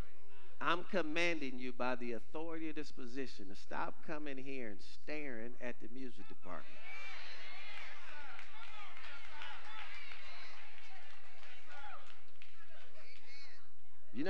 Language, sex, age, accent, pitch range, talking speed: English, male, 50-69, American, 125-195 Hz, 85 wpm